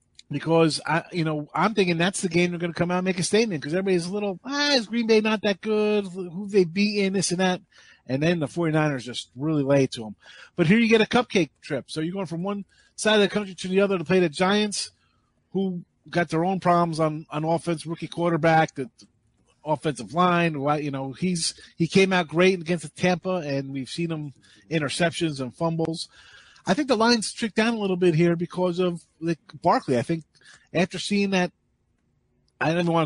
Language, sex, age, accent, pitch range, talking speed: English, male, 30-49, American, 150-190 Hz, 220 wpm